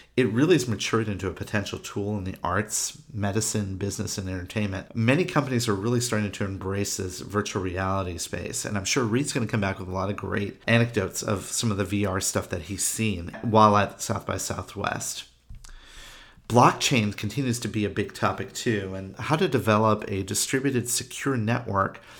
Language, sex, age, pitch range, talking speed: English, male, 40-59, 95-120 Hz, 190 wpm